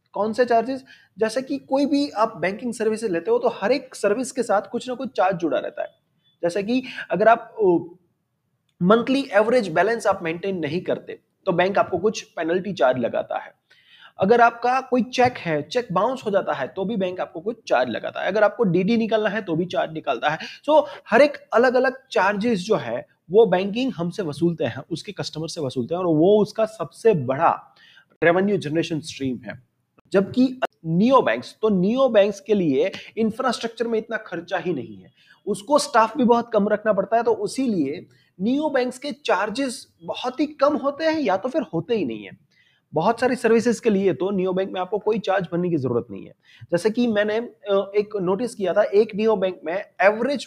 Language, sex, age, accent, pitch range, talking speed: Hindi, male, 30-49, native, 185-240 Hz, 195 wpm